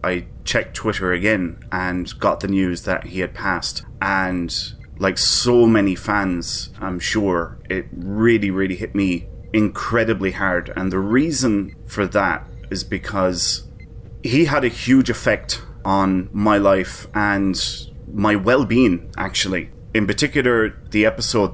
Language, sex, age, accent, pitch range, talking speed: English, male, 20-39, British, 95-110 Hz, 135 wpm